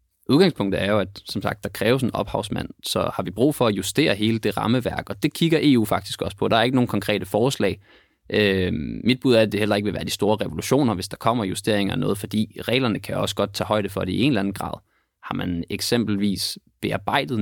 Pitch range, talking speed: 95-115 Hz, 240 wpm